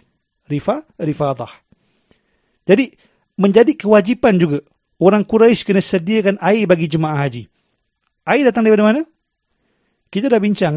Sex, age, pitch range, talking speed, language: male, 40-59, 155-205 Hz, 110 wpm, Malay